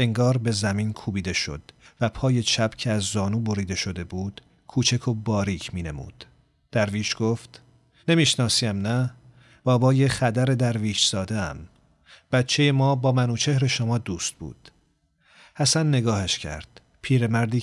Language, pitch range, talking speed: Persian, 105-130 Hz, 145 wpm